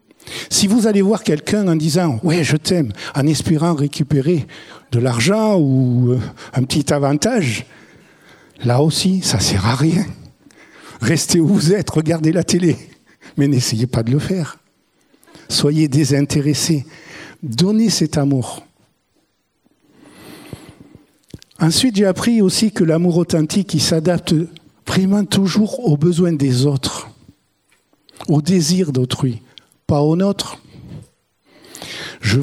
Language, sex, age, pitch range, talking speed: French, male, 60-79, 140-185 Hz, 130 wpm